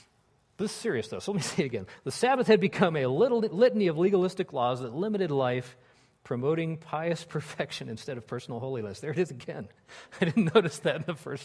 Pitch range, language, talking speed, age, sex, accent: 115-150 Hz, English, 210 wpm, 40-59, male, American